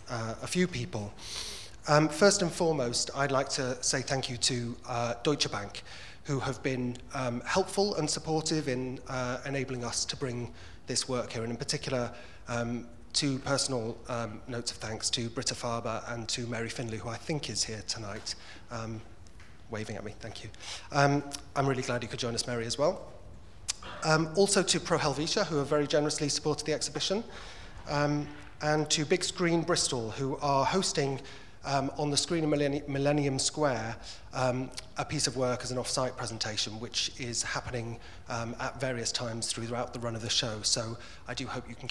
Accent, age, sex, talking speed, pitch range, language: British, 30-49, male, 185 wpm, 115-145 Hz, English